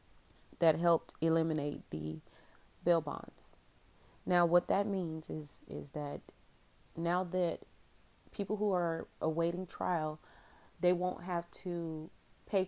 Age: 30-49